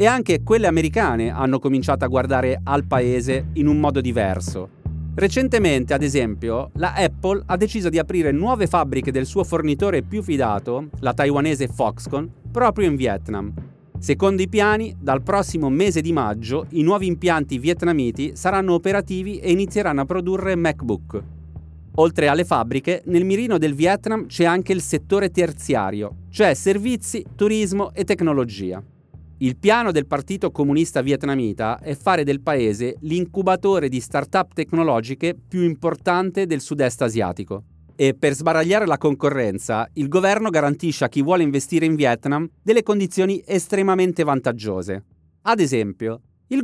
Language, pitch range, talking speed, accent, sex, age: Italian, 125-185 Hz, 145 wpm, native, male, 30-49